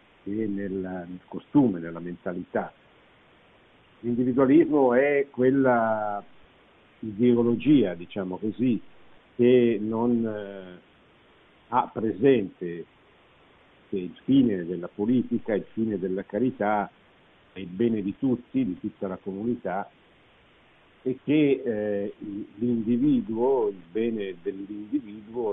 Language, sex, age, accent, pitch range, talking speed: Italian, male, 50-69, native, 95-120 Hz, 95 wpm